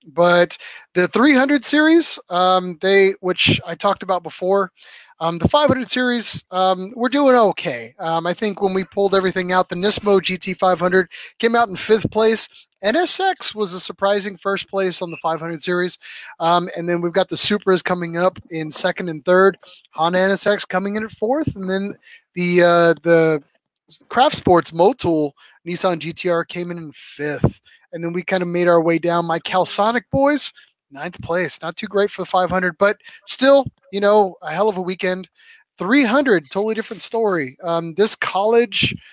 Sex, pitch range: male, 170-210 Hz